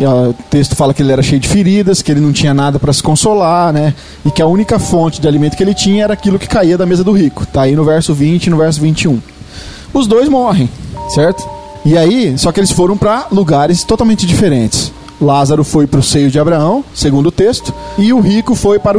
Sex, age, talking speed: male, 20-39, 230 wpm